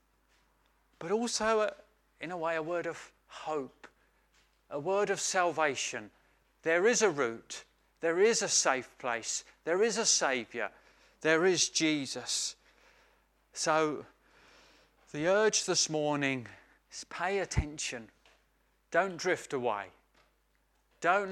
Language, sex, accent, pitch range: English, male, British, 130-170 Hz